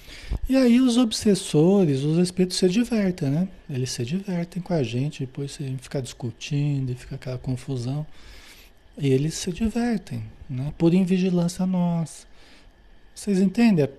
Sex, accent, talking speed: male, Brazilian, 140 wpm